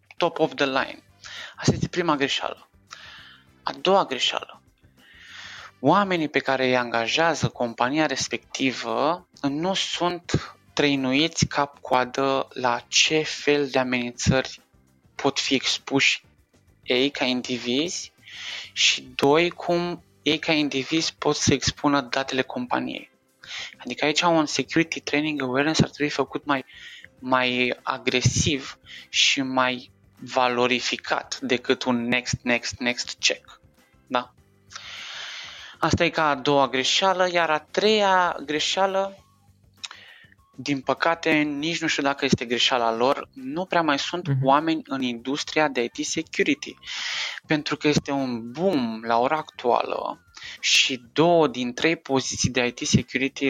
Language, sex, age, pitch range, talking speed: Romanian, male, 20-39, 125-155 Hz, 125 wpm